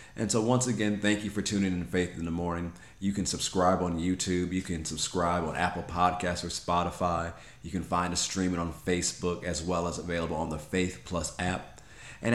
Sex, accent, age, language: male, American, 40-59, English